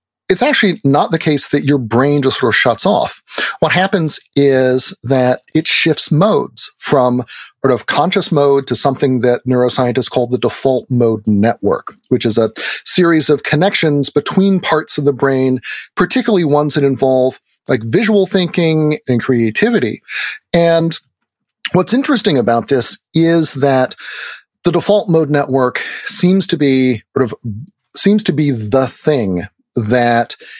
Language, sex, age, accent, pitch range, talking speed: English, male, 40-59, American, 125-160 Hz, 150 wpm